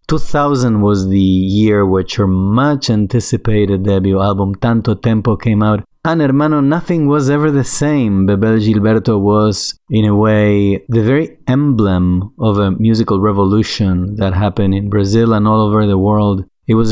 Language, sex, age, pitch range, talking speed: English, male, 30-49, 100-120 Hz, 160 wpm